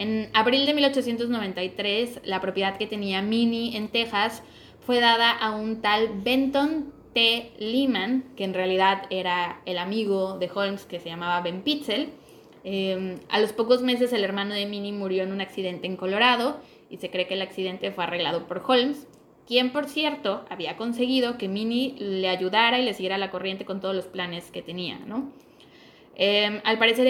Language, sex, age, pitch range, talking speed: Spanish, female, 20-39, 195-265 Hz, 180 wpm